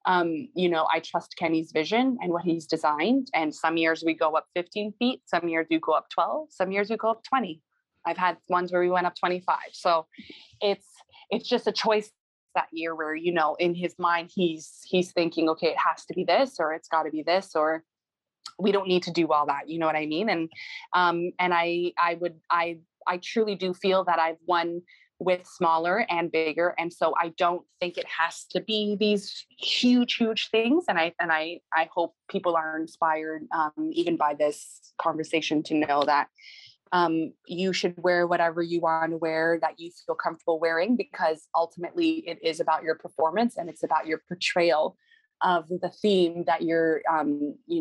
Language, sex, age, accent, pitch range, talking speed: English, female, 20-39, American, 160-185 Hz, 200 wpm